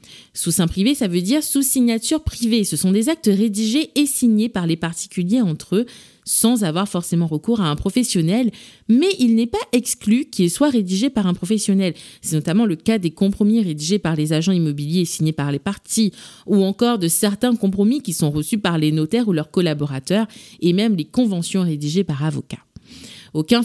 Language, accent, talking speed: French, French, 195 wpm